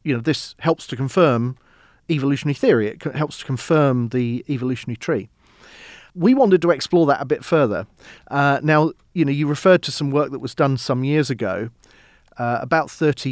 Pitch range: 125-150 Hz